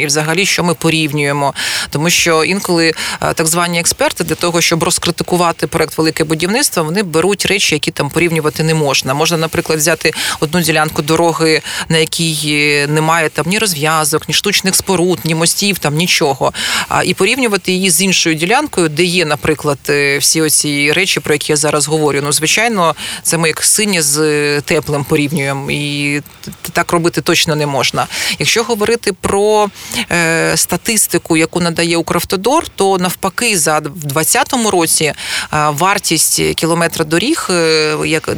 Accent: native